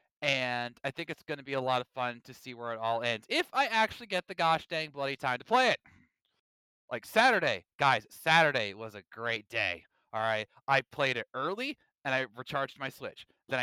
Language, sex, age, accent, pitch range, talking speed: English, male, 30-49, American, 120-165 Hz, 215 wpm